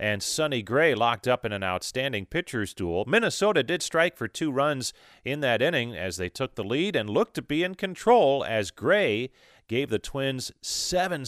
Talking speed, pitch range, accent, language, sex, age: 190 wpm, 120-190 Hz, American, English, male, 40-59